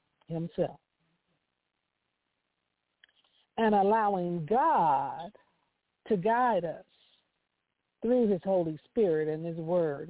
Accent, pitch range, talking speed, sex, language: American, 165-245 Hz, 85 wpm, female, English